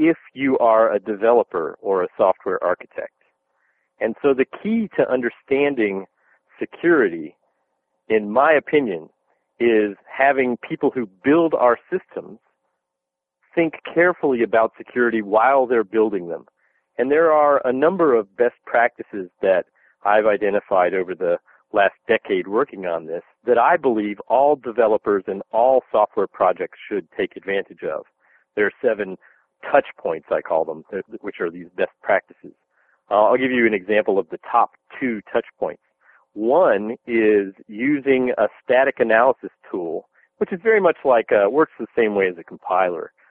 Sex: male